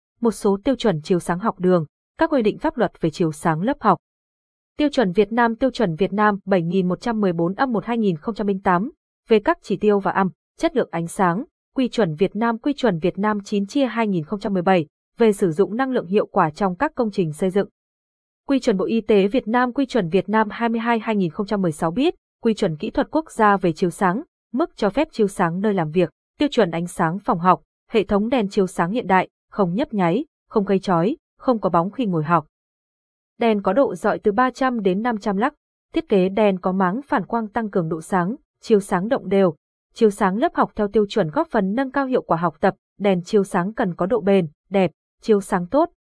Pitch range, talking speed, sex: 185-235 Hz, 215 wpm, female